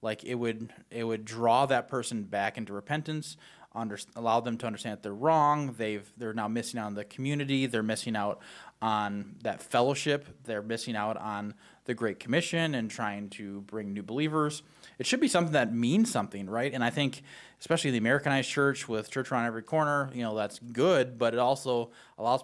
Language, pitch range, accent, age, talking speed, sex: English, 110-130 Hz, American, 20-39, 200 wpm, male